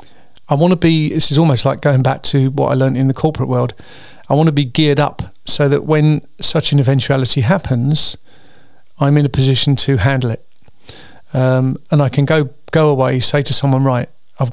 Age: 40-59